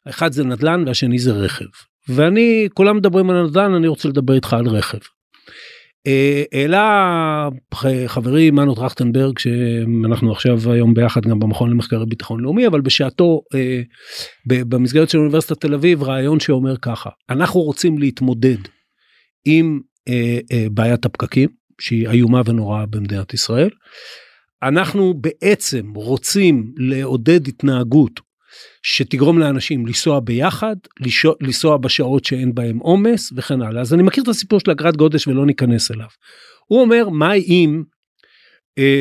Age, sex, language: 50-69, male, Hebrew